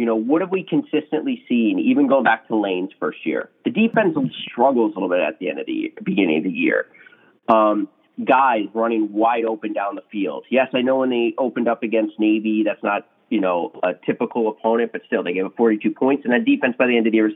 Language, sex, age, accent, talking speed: English, male, 30-49, American, 245 wpm